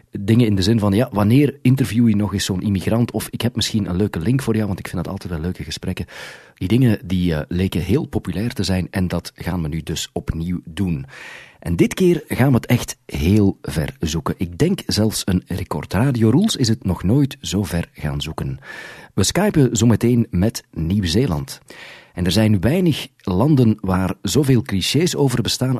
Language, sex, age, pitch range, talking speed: Dutch, male, 40-59, 90-120 Hz, 205 wpm